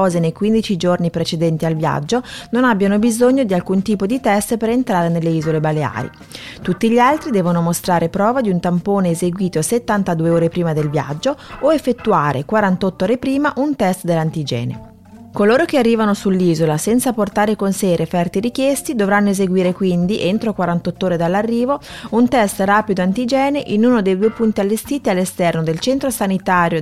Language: Italian